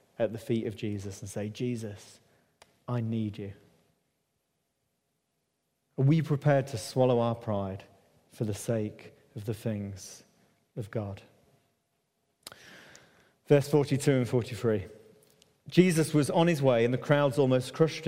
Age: 40-59